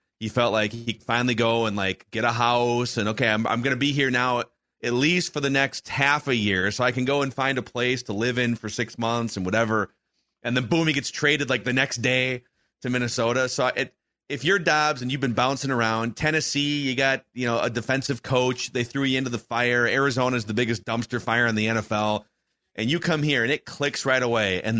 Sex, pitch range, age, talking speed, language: male, 115-155 Hz, 30-49, 240 wpm, English